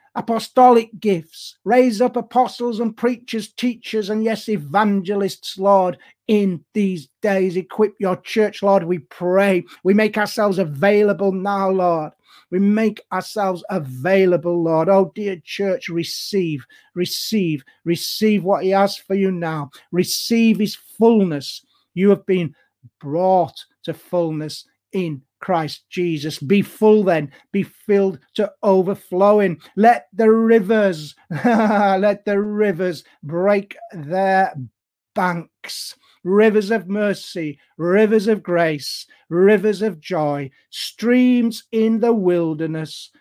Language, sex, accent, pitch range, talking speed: English, male, British, 175-220 Hz, 120 wpm